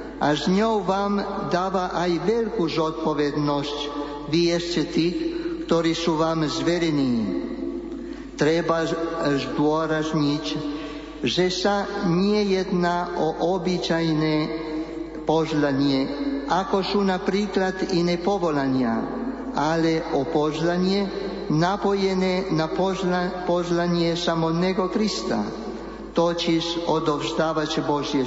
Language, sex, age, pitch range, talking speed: Slovak, male, 50-69, 155-185 Hz, 85 wpm